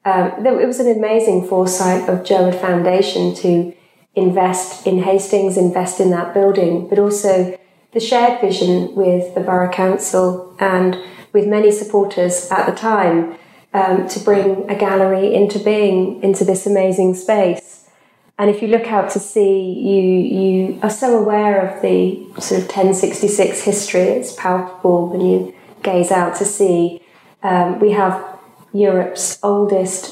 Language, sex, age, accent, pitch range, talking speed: English, female, 30-49, British, 185-205 Hz, 150 wpm